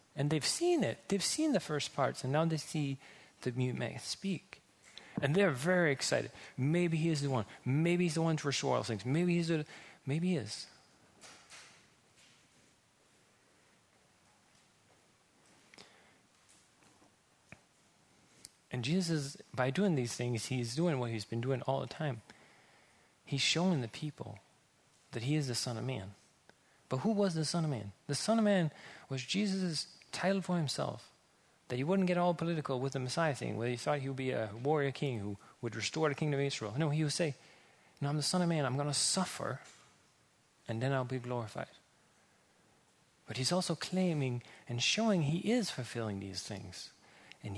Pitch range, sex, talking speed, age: 125-170 Hz, male, 175 wpm, 30-49